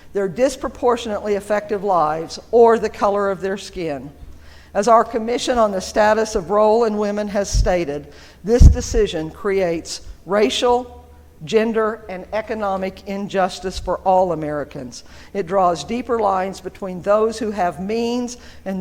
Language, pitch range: English, 160-210 Hz